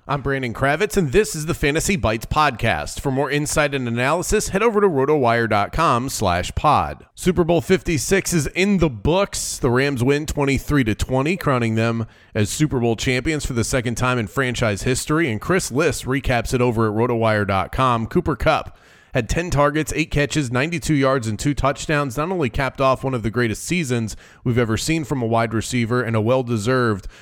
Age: 30-49